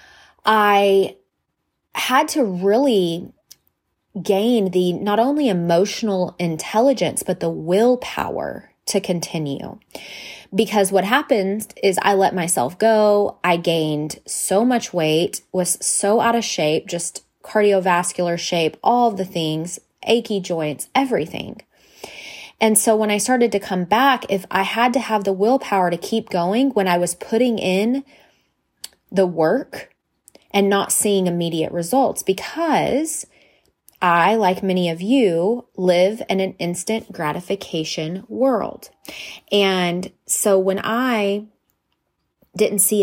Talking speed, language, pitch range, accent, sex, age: 125 wpm, English, 175-220 Hz, American, female, 20-39